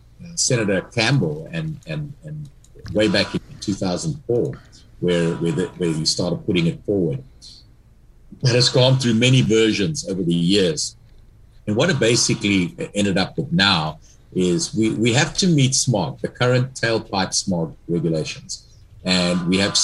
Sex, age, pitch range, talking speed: male, 50-69, 105-150 Hz, 150 wpm